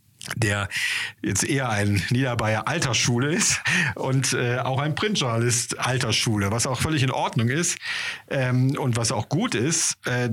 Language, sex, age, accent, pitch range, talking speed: German, male, 40-59, German, 120-140 Hz, 150 wpm